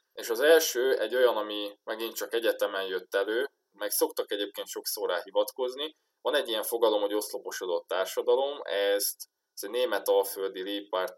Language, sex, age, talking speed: Hungarian, male, 20-39, 160 wpm